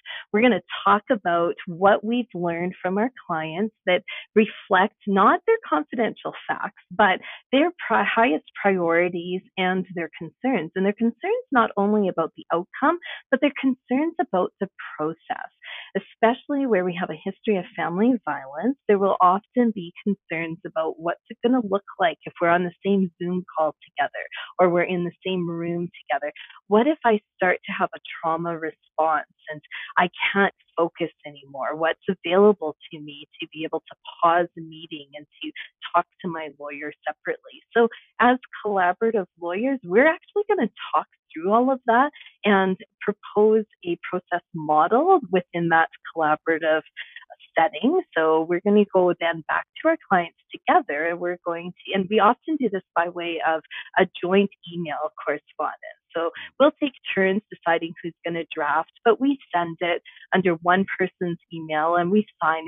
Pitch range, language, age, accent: 170-225 Hz, English, 40-59, American